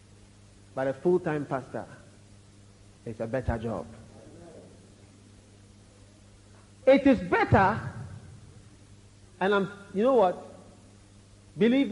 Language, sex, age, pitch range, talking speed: English, male, 50-69, 100-170 Hz, 85 wpm